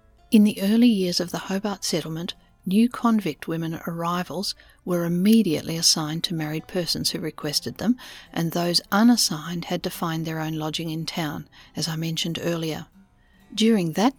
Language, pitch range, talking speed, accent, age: English, 165-220 Hz, 160 wpm, Australian, 50-69